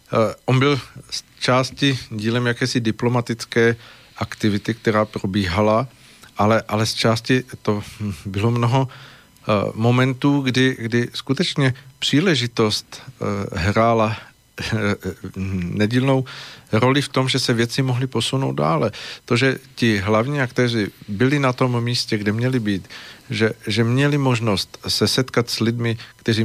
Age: 40-59